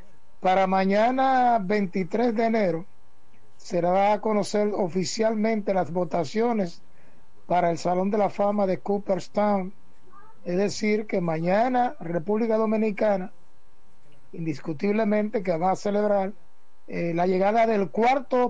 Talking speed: 115 wpm